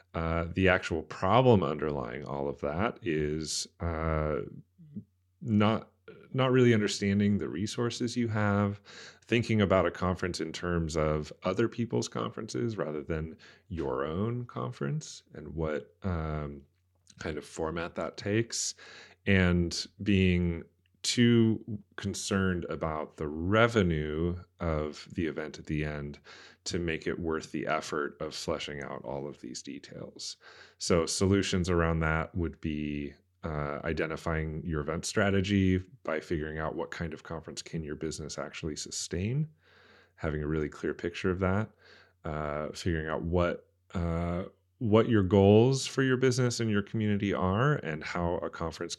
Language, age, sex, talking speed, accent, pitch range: English, 30-49, male, 140 wpm, American, 80-105 Hz